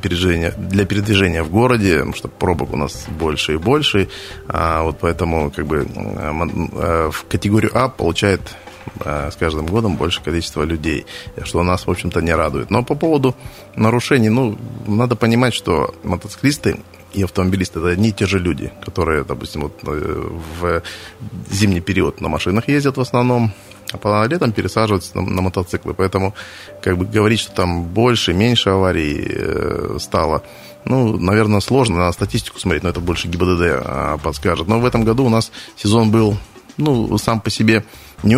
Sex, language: male, Russian